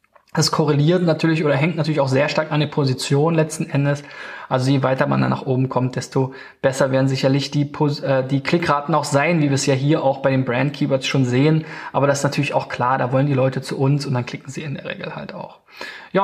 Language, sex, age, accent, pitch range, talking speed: German, male, 20-39, German, 140-175 Hz, 240 wpm